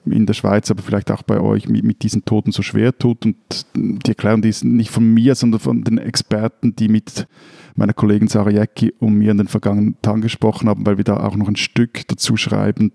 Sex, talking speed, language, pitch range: male, 225 wpm, German, 105-120 Hz